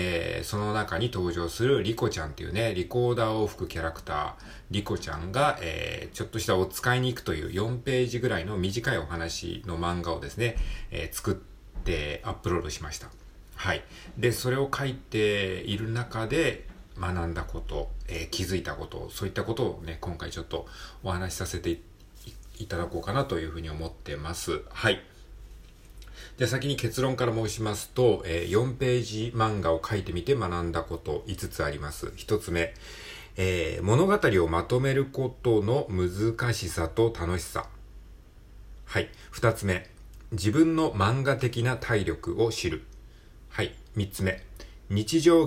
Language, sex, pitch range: Japanese, male, 85-115 Hz